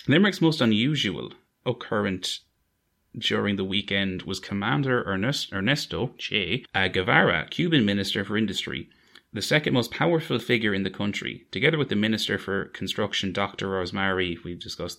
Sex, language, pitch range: male, English, 95-110 Hz